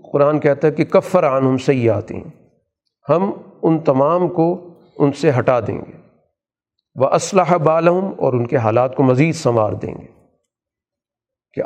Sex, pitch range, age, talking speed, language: male, 130-165 Hz, 50-69, 160 wpm, Urdu